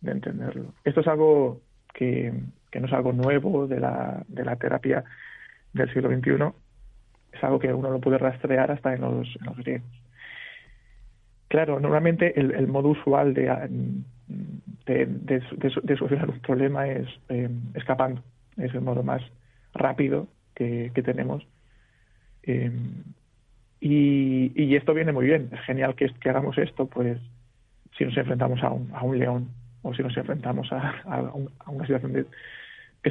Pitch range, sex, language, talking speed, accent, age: 120-140 Hz, male, Spanish, 165 wpm, Spanish, 40-59